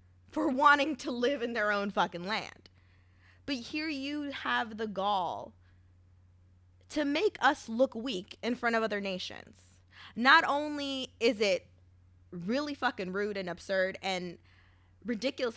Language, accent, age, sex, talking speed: English, American, 20-39, female, 140 wpm